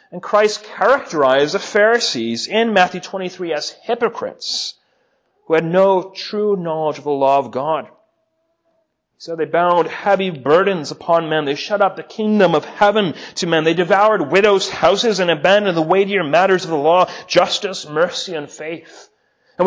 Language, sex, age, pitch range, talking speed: English, male, 30-49, 165-210 Hz, 160 wpm